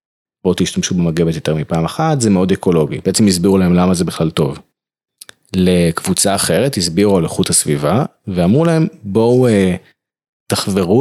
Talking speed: 145 wpm